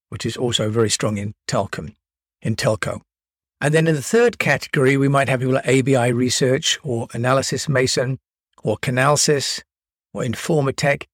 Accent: British